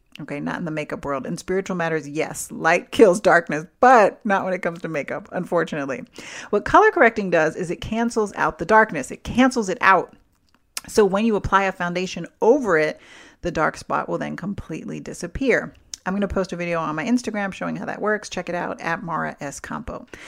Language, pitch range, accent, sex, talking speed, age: English, 155-205 Hz, American, female, 205 wpm, 40-59